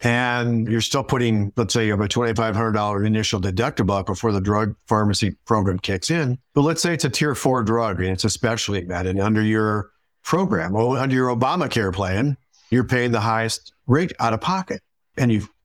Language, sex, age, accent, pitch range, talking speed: English, male, 50-69, American, 110-125 Hz, 205 wpm